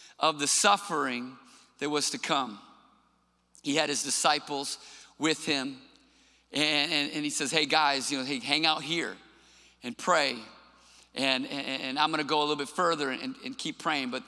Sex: male